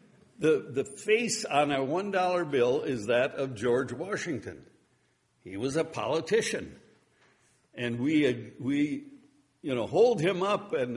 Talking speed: 135 wpm